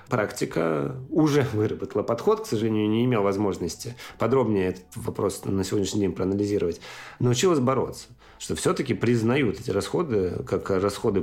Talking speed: 135 wpm